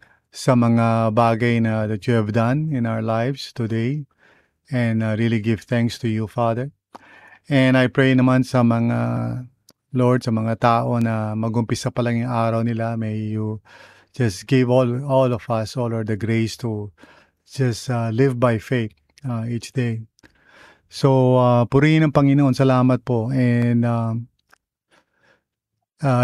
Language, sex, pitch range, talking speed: English, male, 115-130 Hz, 155 wpm